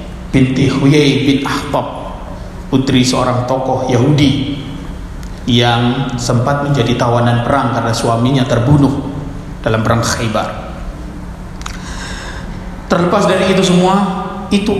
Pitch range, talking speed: 130-175 Hz, 95 wpm